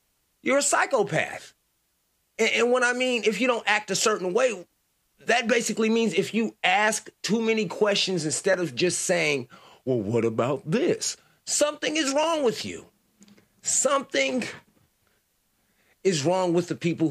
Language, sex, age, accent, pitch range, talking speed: English, male, 40-59, American, 170-245 Hz, 150 wpm